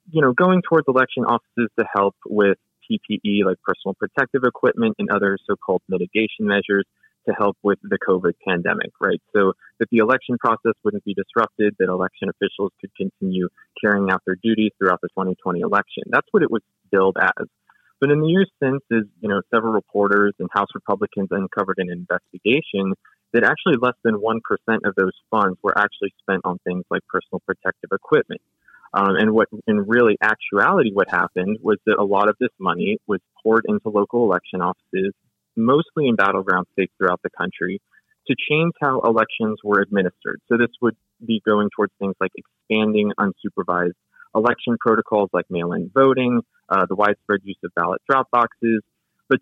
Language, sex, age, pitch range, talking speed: English, male, 20-39, 100-120 Hz, 175 wpm